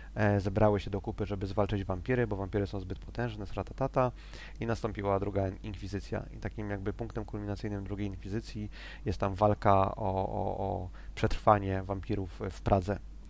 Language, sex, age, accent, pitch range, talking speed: Polish, male, 20-39, native, 100-110 Hz, 160 wpm